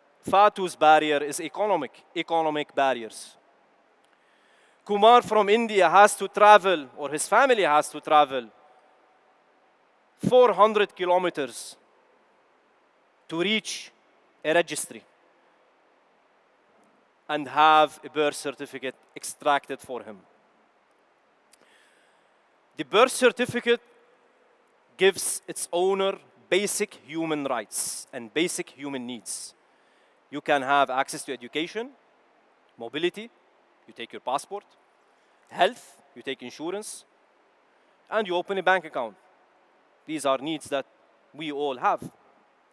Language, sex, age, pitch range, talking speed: Dutch, male, 30-49, 145-195 Hz, 105 wpm